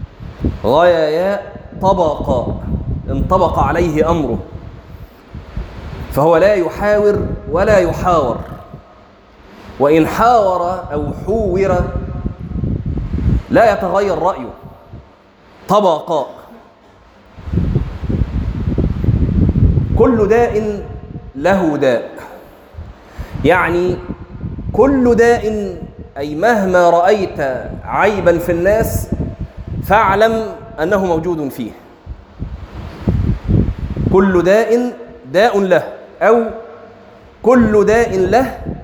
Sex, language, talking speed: male, Arabic, 70 wpm